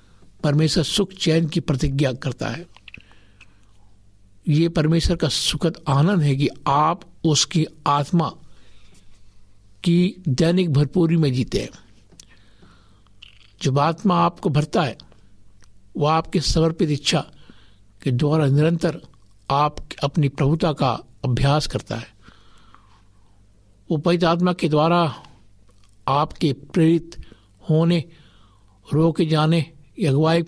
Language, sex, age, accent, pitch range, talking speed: Hindi, male, 60-79, native, 100-160 Hz, 105 wpm